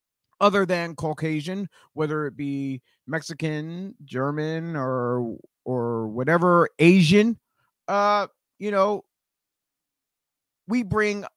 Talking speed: 90 wpm